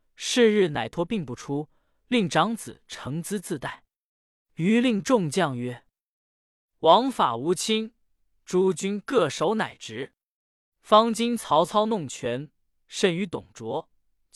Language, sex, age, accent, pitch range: Chinese, male, 20-39, native, 140-220 Hz